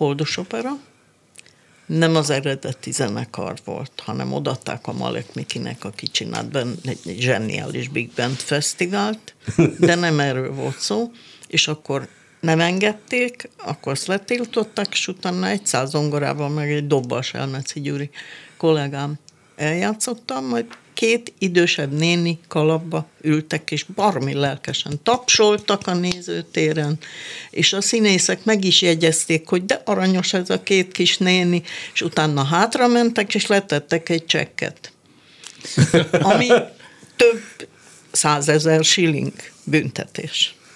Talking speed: 120 wpm